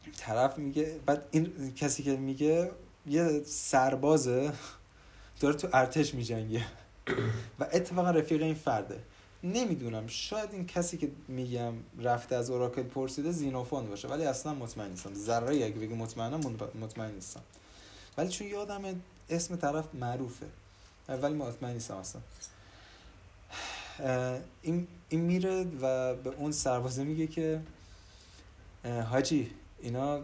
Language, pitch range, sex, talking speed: Persian, 110-145 Hz, male, 120 wpm